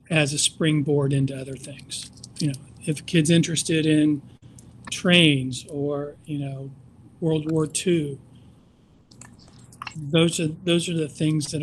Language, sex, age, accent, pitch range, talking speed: English, male, 40-59, American, 135-155 Hz, 135 wpm